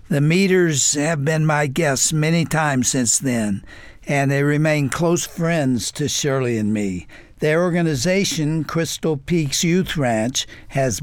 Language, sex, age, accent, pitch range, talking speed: English, male, 60-79, American, 130-155 Hz, 140 wpm